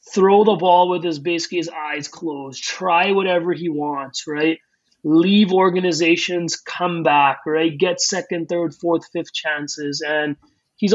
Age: 30-49